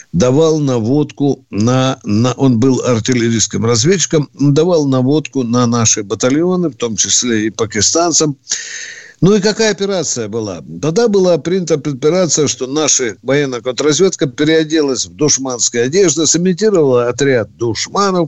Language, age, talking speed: Russian, 50-69, 125 wpm